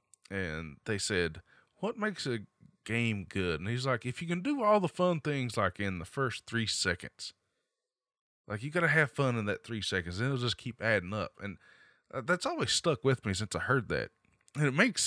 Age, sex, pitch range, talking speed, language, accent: 20-39, male, 105-150 Hz, 210 wpm, English, American